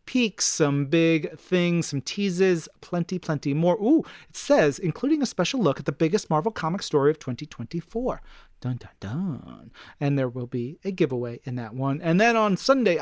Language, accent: English, American